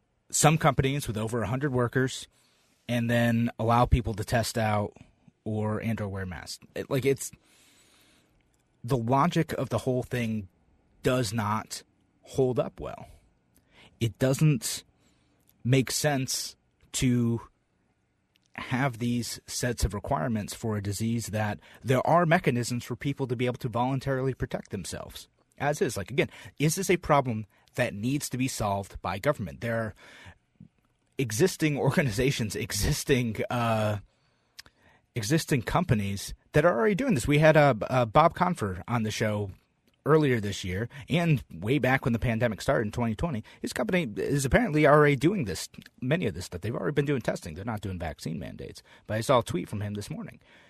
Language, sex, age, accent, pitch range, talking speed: English, male, 30-49, American, 110-145 Hz, 160 wpm